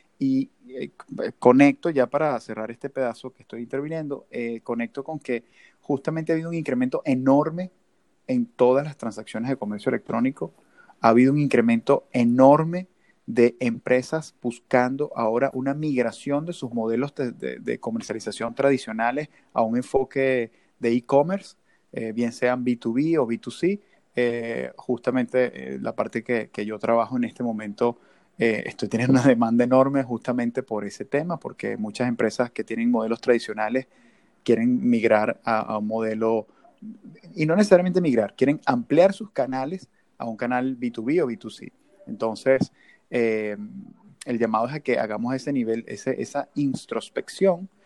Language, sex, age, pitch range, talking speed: Spanish, male, 30-49, 115-145 Hz, 150 wpm